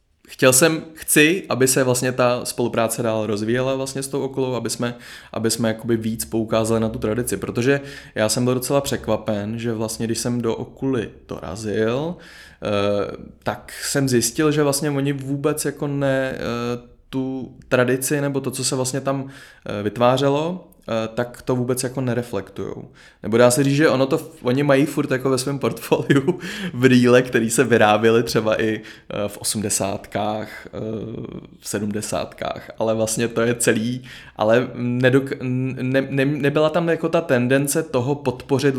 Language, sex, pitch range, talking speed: Czech, male, 110-130 Hz, 155 wpm